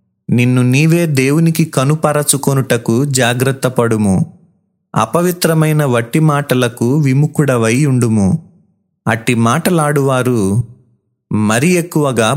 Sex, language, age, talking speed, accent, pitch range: male, Telugu, 30-49, 60 wpm, native, 120-155 Hz